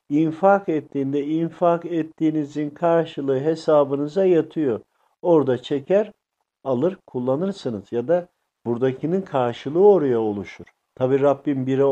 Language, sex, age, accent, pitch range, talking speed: Turkish, male, 50-69, native, 130-175 Hz, 100 wpm